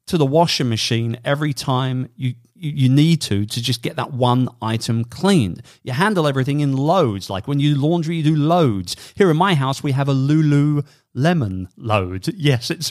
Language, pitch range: English, 120-170 Hz